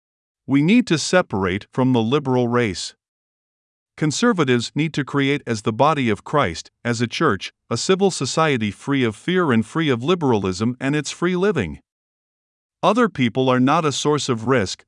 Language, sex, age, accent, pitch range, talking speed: English, male, 50-69, American, 120-160 Hz, 170 wpm